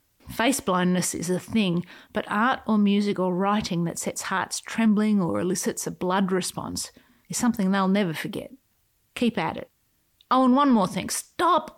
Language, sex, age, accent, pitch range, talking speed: English, female, 30-49, Australian, 190-260 Hz, 175 wpm